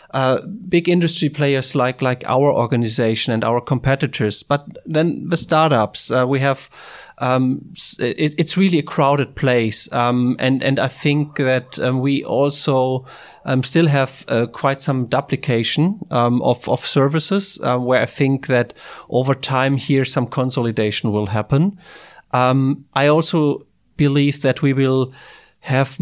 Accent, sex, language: German, male, German